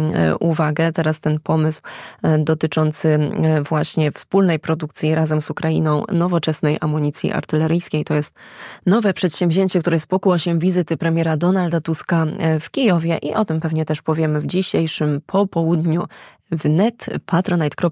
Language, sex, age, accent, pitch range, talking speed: Polish, female, 20-39, native, 155-170 Hz, 125 wpm